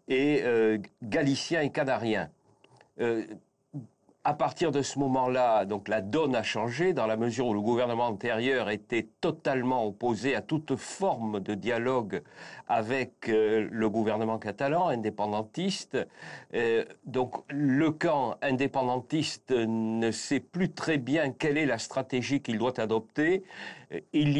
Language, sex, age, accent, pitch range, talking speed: French, male, 50-69, French, 110-140 Hz, 135 wpm